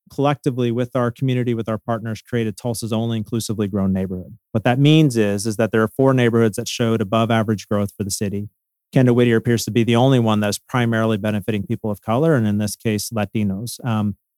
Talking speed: 215 wpm